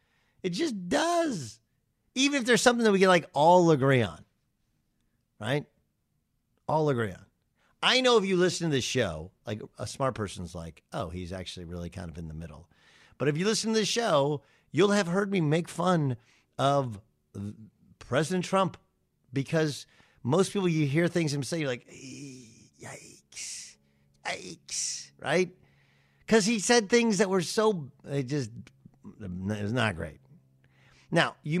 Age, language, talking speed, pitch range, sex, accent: 50-69, English, 160 wpm, 115-180 Hz, male, American